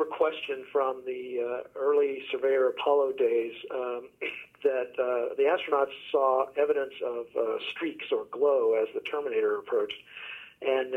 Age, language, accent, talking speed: 50-69, English, American, 135 wpm